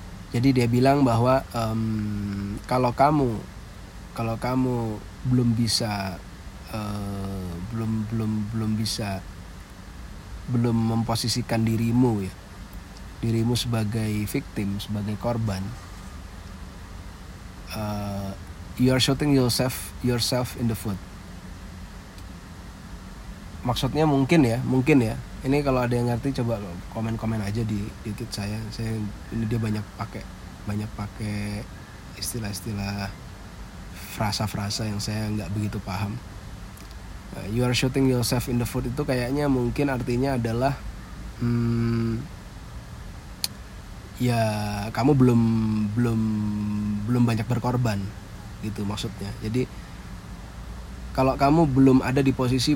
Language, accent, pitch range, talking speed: Indonesian, native, 100-120 Hz, 110 wpm